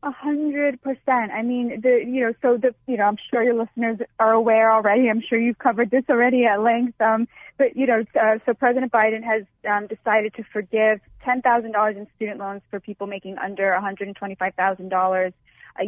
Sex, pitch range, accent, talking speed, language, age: female, 215-280 Hz, American, 220 wpm, English, 20-39